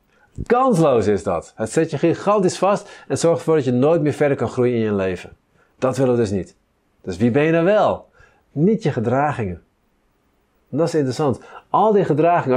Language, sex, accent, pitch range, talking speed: Dutch, male, Dutch, 120-165 Hz, 195 wpm